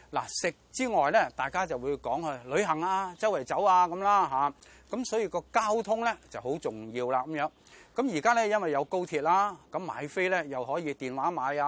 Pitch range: 135-195 Hz